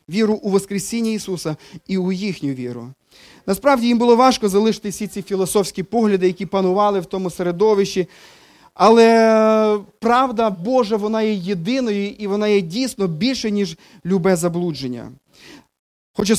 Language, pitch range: Ukrainian, 175-210 Hz